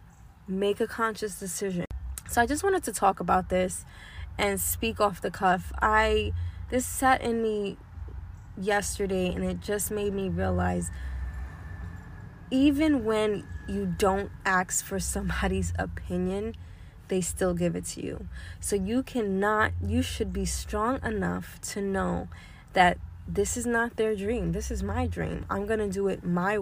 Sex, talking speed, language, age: female, 155 wpm, English, 20-39